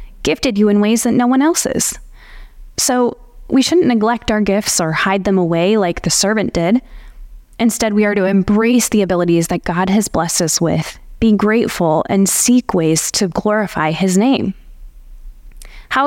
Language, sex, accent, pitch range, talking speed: English, female, American, 190-240 Hz, 170 wpm